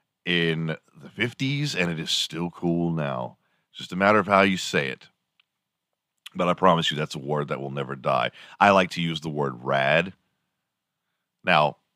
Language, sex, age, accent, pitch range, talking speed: English, male, 40-59, American, 90-115 Hz, 185 wpm